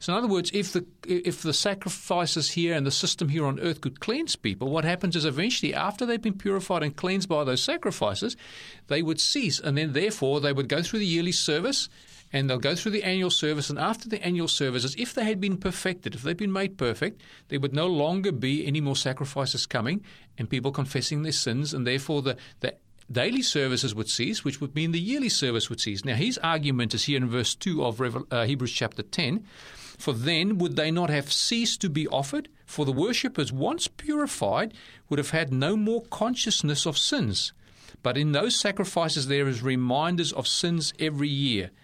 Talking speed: 210 wpm